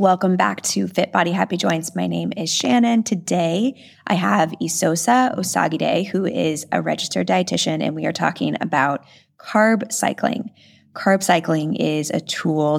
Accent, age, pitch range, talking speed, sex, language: American, 20-39, 150-175 Hz, 155 wpm, female, English